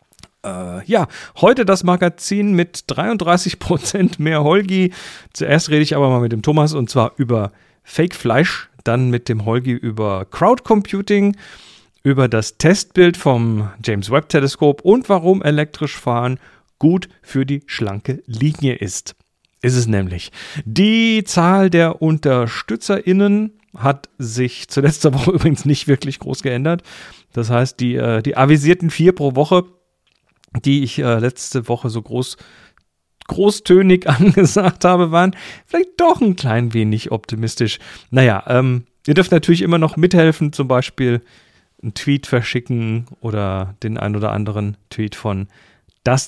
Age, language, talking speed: 40-59, German, 135 wpm